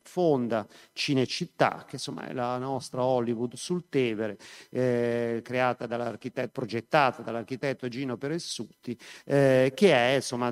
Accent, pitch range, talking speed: native, 120-140 Hz, 120 wpm